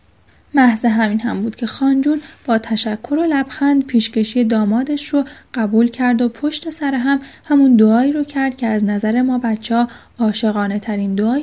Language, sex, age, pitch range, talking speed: Persian, female, 10-29, 215-260 Hz, 165 wpm